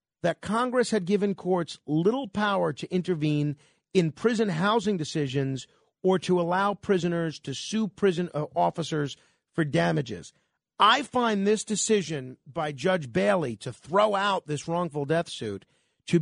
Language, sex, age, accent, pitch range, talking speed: English, male, 40-59, American, 150-210 Hz, 140 wpm